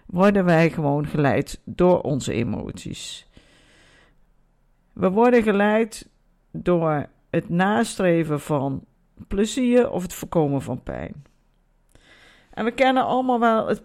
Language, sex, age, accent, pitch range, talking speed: Dutch, female, 50-69, Dutch, 160-210 Hz, 115 wpm